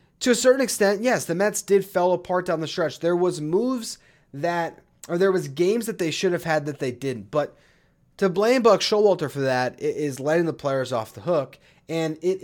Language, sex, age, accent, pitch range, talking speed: English, male, 30-49, American, 140-200 Hz, 215 wpm